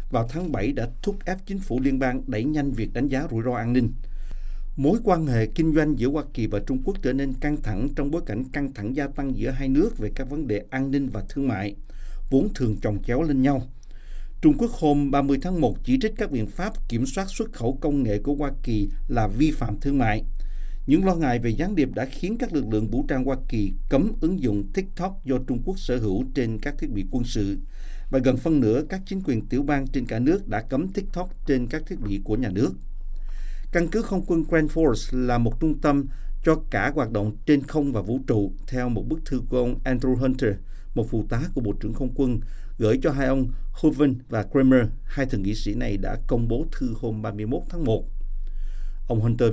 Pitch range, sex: 115-150 Hz, male